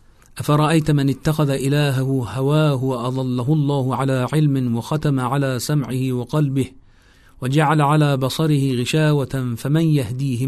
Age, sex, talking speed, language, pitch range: 40-59, male, 115 wpm, Persian, 125-145 Hz